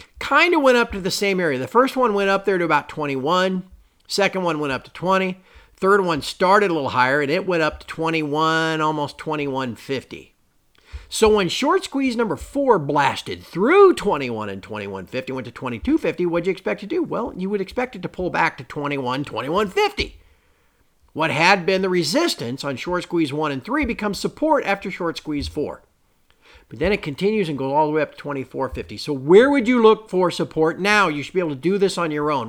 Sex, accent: male, American